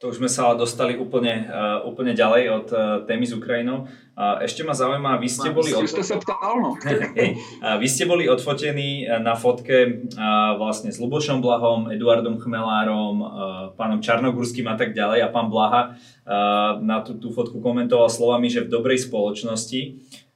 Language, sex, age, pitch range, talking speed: Slovak, male, 20-39, 110-125 Hz, 135 wpm